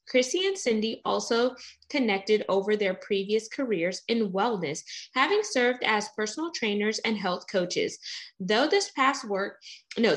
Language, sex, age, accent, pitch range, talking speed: English, female, 20-39, American, 195-255 Hz, 140 wpm